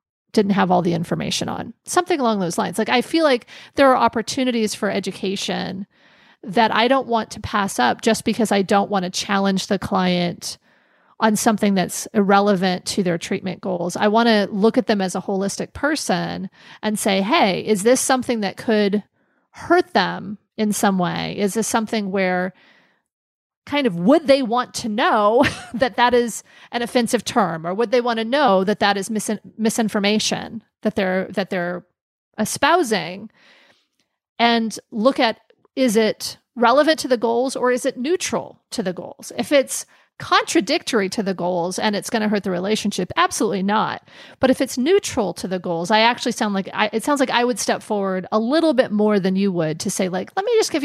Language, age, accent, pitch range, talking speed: English, 30-49, American, 195-245 Hz, 190 wpm